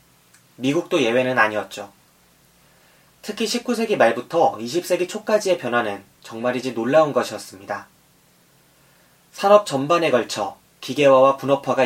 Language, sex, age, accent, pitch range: Korean, male, 30-49, native, 120-165 Hz